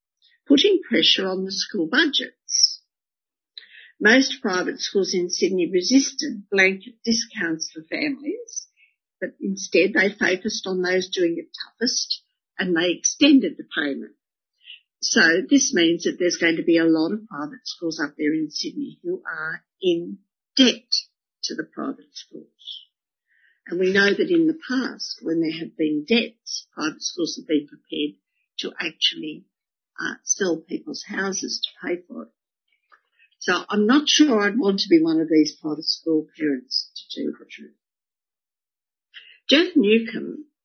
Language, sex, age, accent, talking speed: English, female, 50-69, Australian, 150 wpm